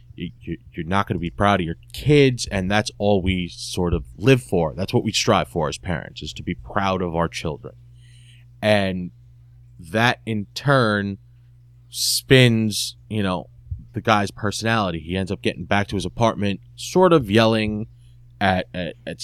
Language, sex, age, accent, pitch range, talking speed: English, male, 30-49, American, 95-120 Hz, 165 wpm